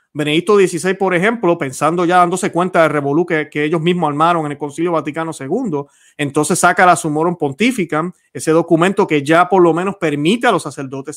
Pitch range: 150-190 Hz